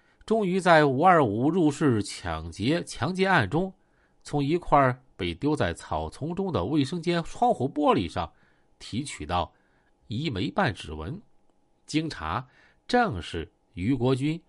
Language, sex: Chinese, male